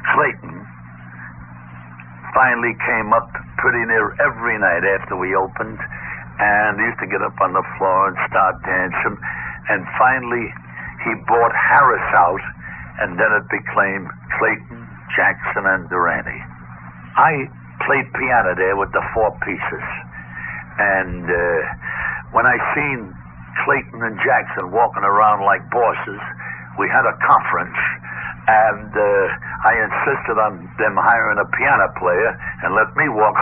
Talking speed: 135 wpm